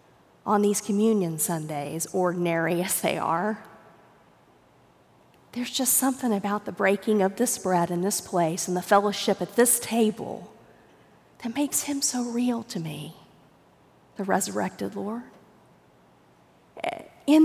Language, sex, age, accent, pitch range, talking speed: English, female, 40-59, American, 175-235 Hz, 125 wpm